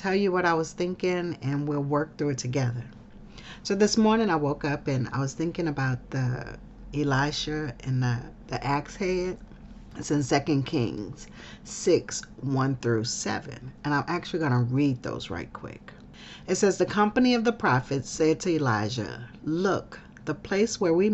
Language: English